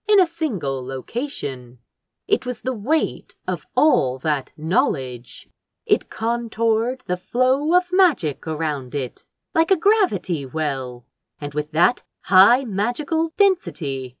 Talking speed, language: 125 wpm, English